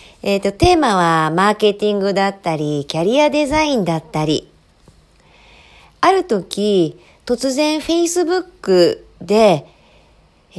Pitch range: 165-245 Hz